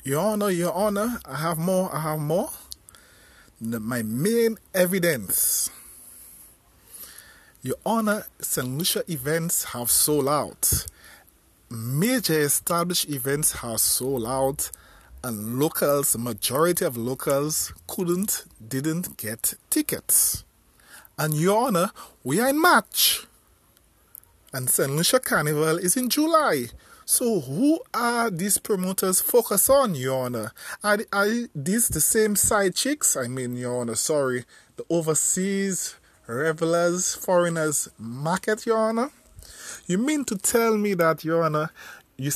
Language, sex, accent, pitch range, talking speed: English, male, Nigerian, 130-210 Hz, 125 wpm